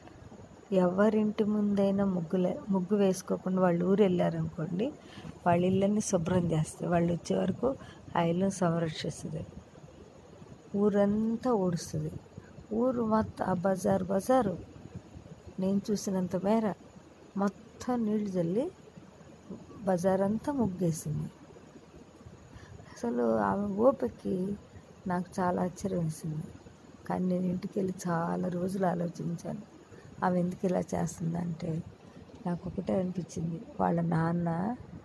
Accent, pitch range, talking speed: native, 170-200 Hz, 90 wpm